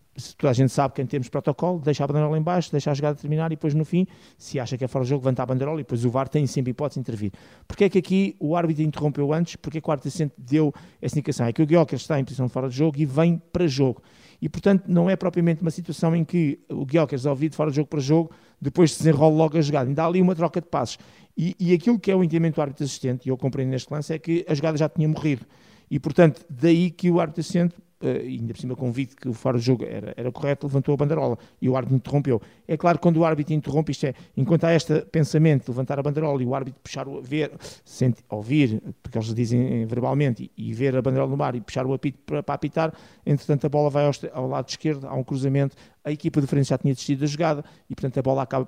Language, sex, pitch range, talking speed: Portuguese, male, 135-160 Hz, 265 wpm